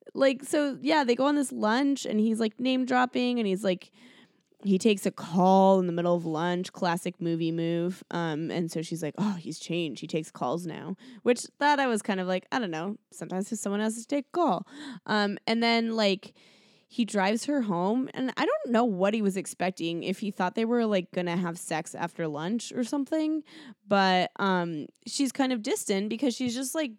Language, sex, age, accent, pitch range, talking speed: English, female, 20-39, American, 175-235 Hz, 215 wpm